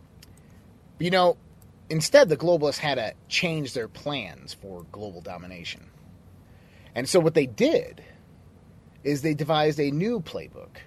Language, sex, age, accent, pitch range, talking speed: English, male, 30-49, American, 95-160 Hz, 135 wpm